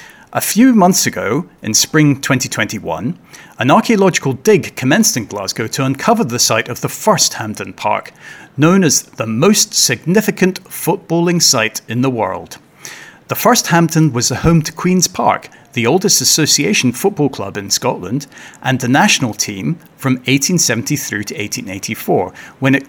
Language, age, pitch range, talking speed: English, 40-59, 120-175 Hz, 150 wpm